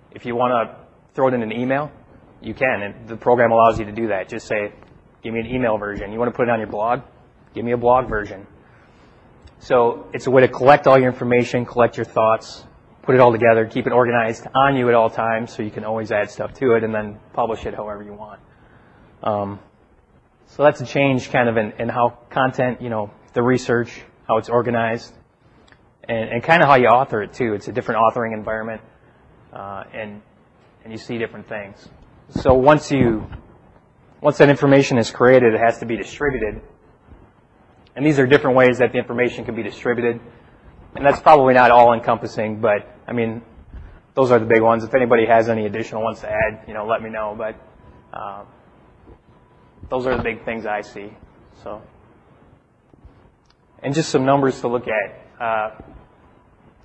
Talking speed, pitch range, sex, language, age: 195 wpm, 110-125 Hz, male, English, 20-39